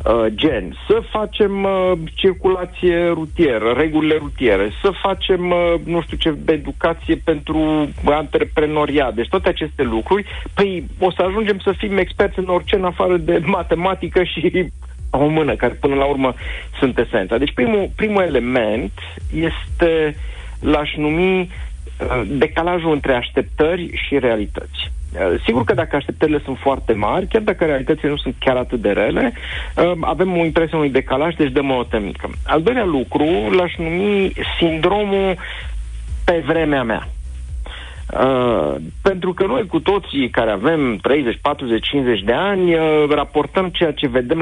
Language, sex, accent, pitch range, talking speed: Romanian, male, native, 125-180 Hz, 140 wpm